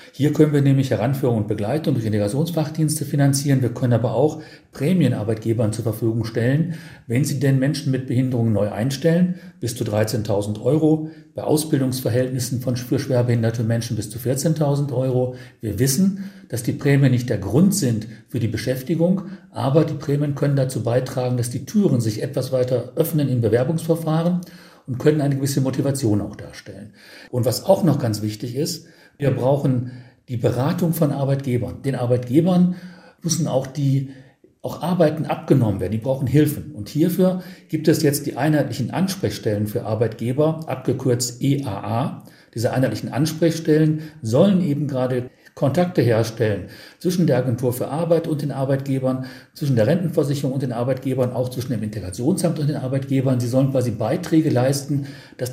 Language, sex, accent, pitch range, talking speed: German, male, German, 120-155 Hz, 155 wpm